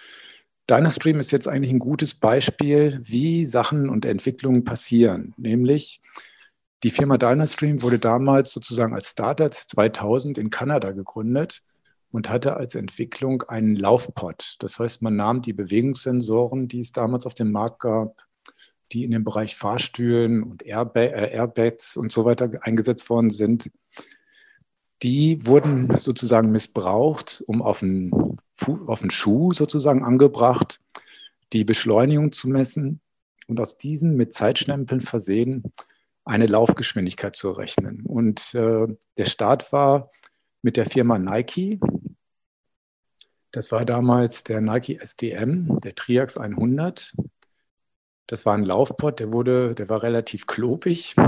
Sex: male